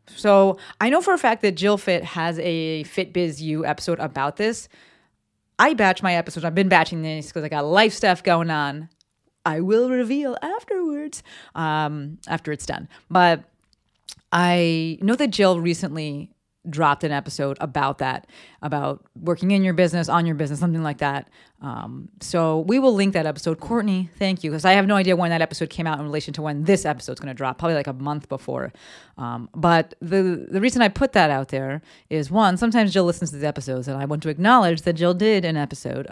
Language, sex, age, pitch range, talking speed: English, female, 30-49, 150-200 Hz, 205 wpm